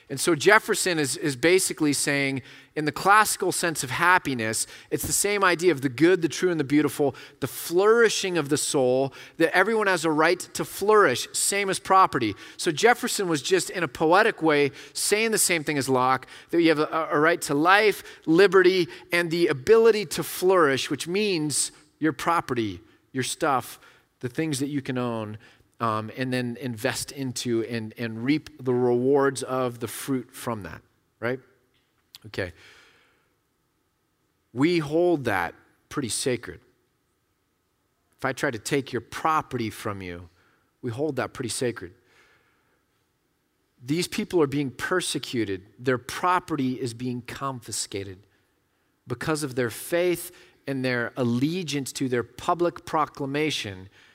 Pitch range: 120-170 Hz